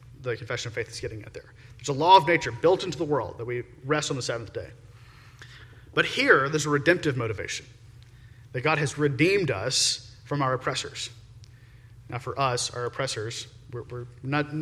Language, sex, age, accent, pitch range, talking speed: English, male, 30-49, American, 115-145 Hz, 190 wpm